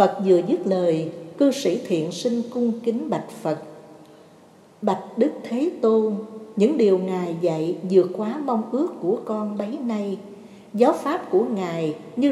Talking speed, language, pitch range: 160 wpm, Vietnamese, 170-255 Hz